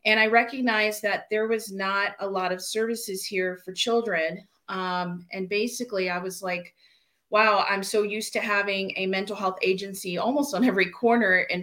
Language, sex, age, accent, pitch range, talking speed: English, female, 30-49, American, 190-220 Hz, 180 wpm